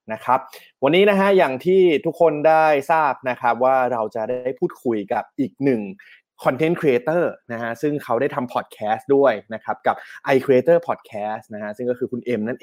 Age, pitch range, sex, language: 20-39, 120-155 Hz, male, Thai